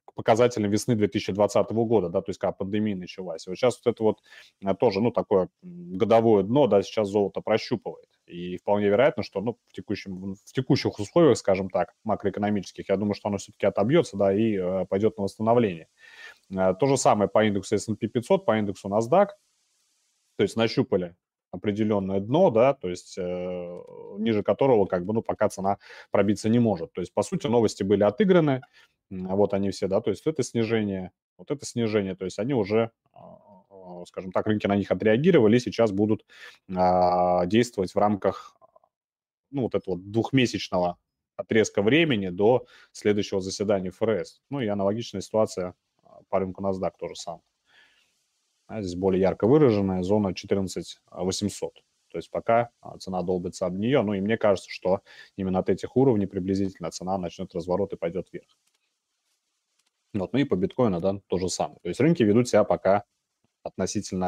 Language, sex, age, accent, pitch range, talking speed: Russian, male, 30-49, native, 95-115 Hz, 160 wpm